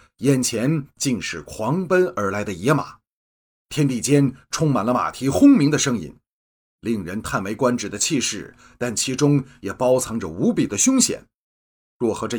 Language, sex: Chinese, male